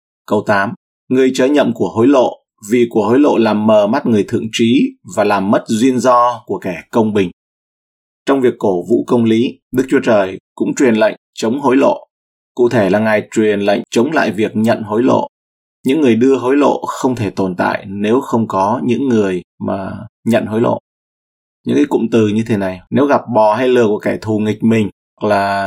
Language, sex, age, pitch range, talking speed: Vietnamese, male, 20-39, 95-120 Hz, 215 wpm